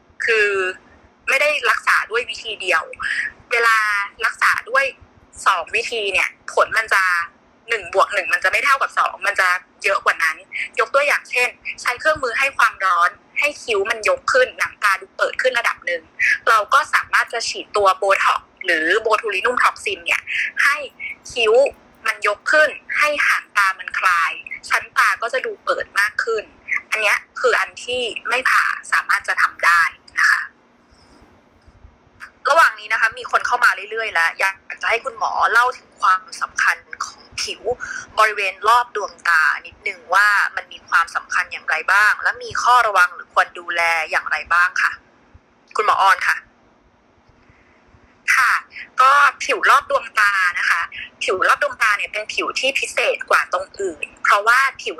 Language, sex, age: Thai, female, 20-39